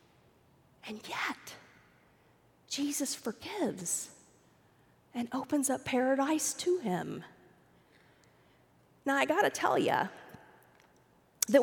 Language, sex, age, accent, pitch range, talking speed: English, female, 40-59, American, 205-285 Hz, 85 wpm